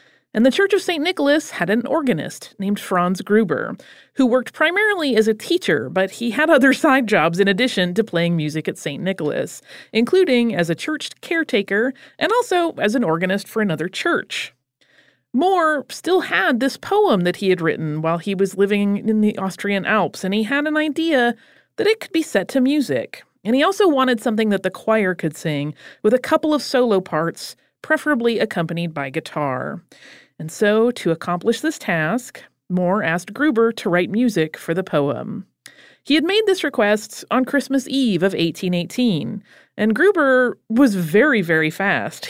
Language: English